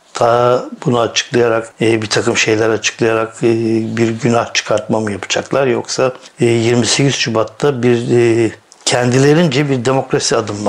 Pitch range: 115-130 Hz